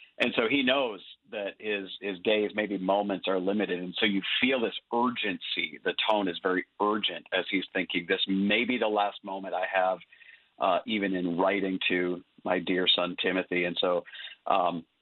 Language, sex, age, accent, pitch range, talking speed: English, male, 40-59, American, 95-115 Hz, 185 wpm